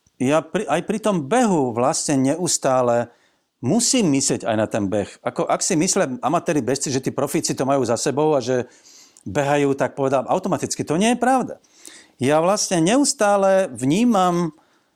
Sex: male